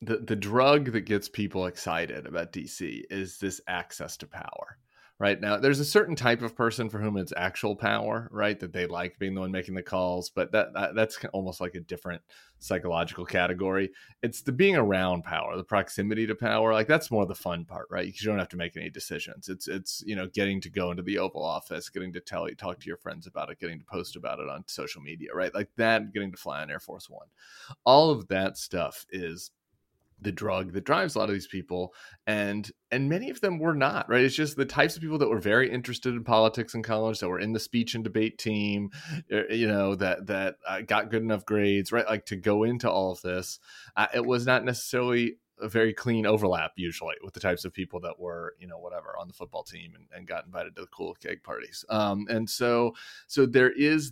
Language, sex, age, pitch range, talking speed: English, male, 30-49, 95-115 Hz, 230 wpm